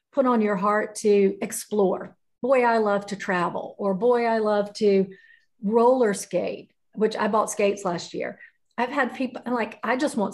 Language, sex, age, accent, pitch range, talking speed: English, female, 40-59, American, 195-235 Hz, 180 wpm